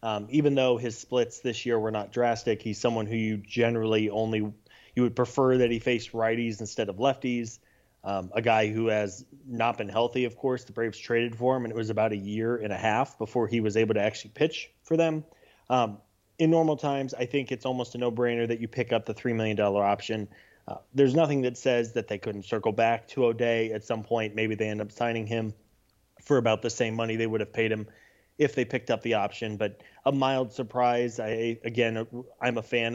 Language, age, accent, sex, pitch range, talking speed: English, 20-39, American, male, 110-125 Hz, 225 wpm